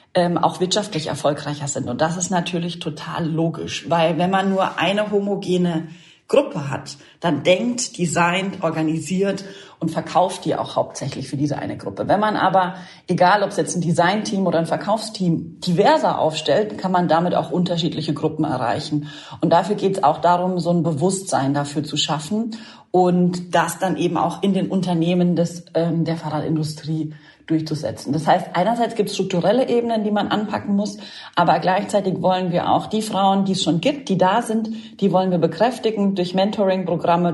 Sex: female